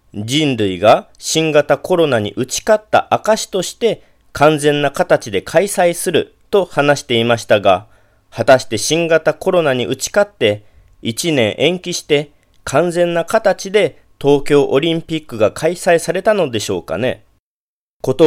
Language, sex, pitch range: Japanese, male, 115-170 Hz